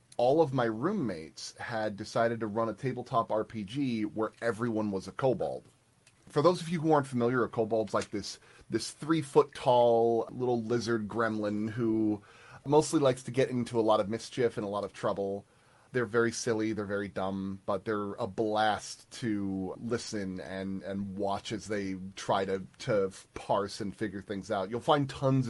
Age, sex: 30-49, male